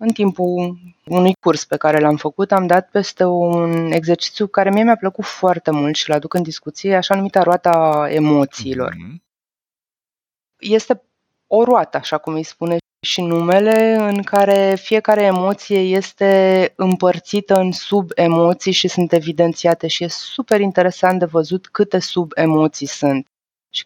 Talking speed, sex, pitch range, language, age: 145 wpm, female, 150-195 Hz, Romanian, 20-39